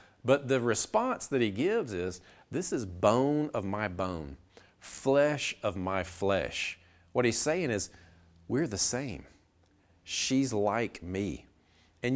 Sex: male